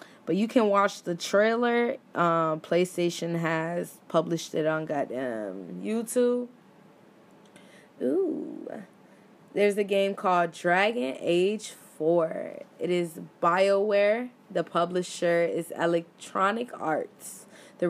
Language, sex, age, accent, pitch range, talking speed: English, female, 20-39, American, 165-205 Hz, 105 wpm